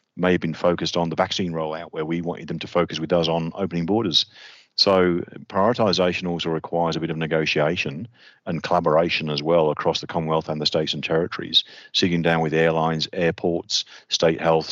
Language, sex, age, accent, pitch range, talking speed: English, male, 40-59, British, 80-90 Hz, 190 wpm